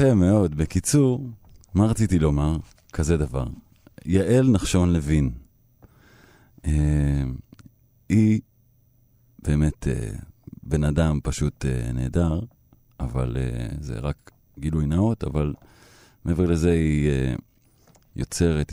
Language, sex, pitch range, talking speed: Hebrew, male, 75-115 Hz, 100 wpm